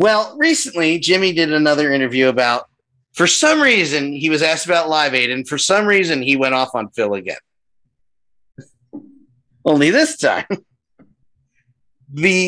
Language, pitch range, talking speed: English, 140-215 Hz, 145 wpm